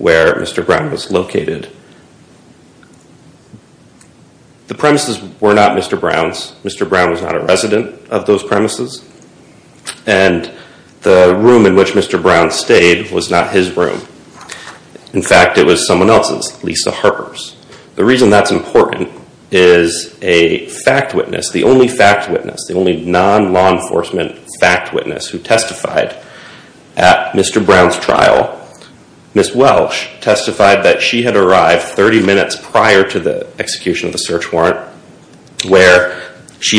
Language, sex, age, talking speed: English, male, 40-59, 135 wpm